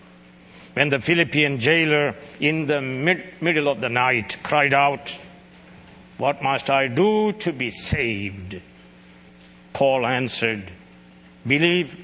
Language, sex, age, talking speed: English, male, 60-79, 110 wpm